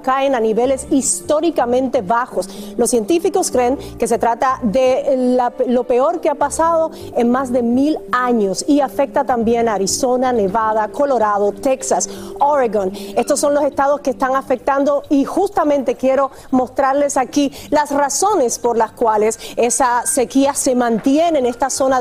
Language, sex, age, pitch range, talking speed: Spanish, female, 40-59, 255-305 Hz, 155 wpm